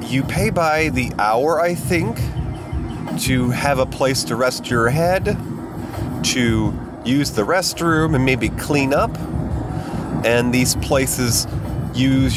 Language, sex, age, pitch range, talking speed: English, male, 30-49, 120-145 Hz, 130 wpm